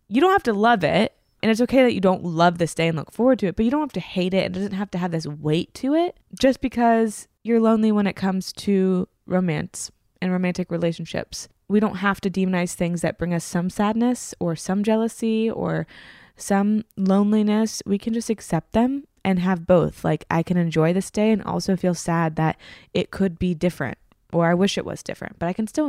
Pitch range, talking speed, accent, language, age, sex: 170-215 Hz, 225 wpm, American, English, 20-39, female